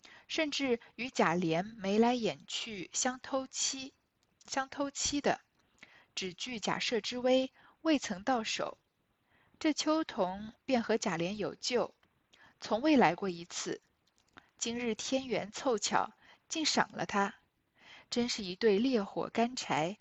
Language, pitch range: Chinese, 195-260 Hz